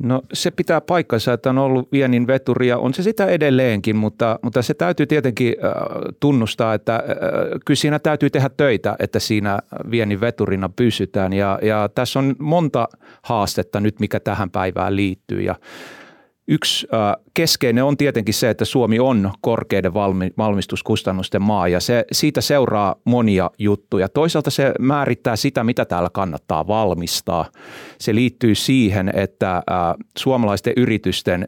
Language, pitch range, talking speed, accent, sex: Finnish, 95-125 Hz, 135 wpm, native, male